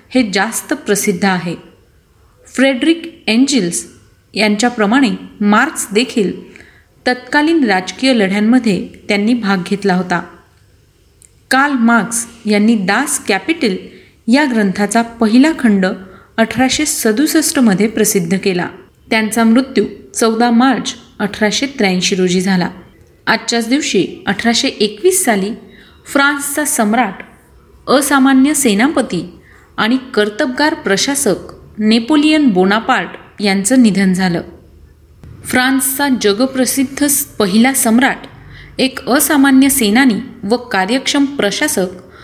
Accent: native